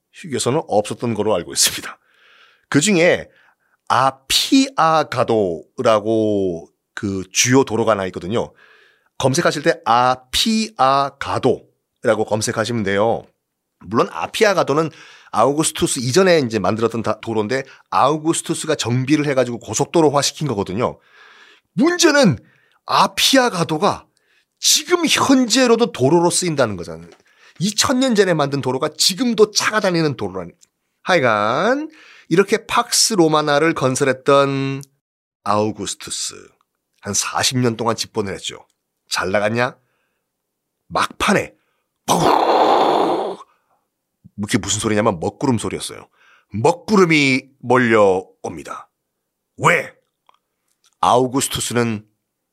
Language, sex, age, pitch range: Korean, male, 40-59, 110-170 Hz